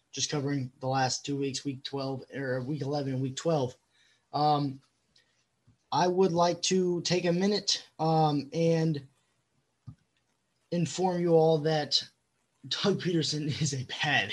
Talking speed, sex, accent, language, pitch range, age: 140 wpm, male, American, English, 140-165 Hz, 20-39